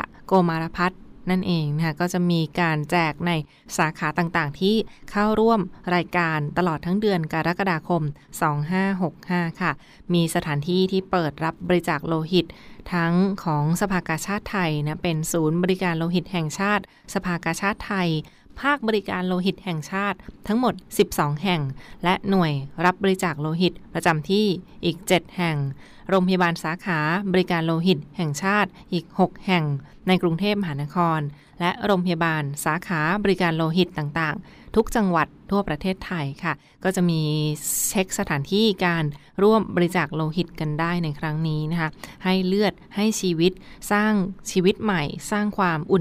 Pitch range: 160-190 Hz